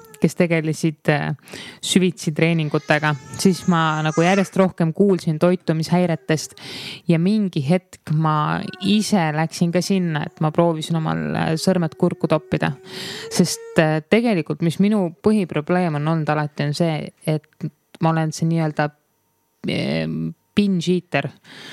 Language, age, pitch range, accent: English, 20-39, 155-185 Hz, Finnish